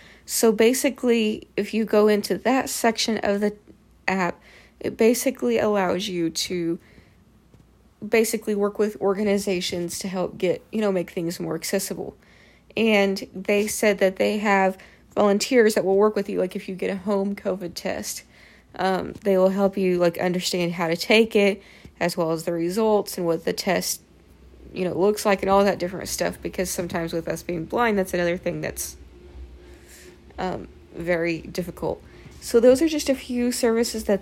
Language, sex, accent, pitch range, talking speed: English, female, American, 175-210 Hz, 175 wpm